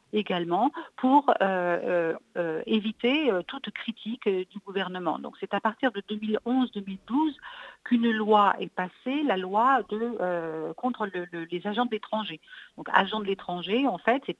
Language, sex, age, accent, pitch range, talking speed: French, female, 50-69, French, 180-245 Hz, 155 wpm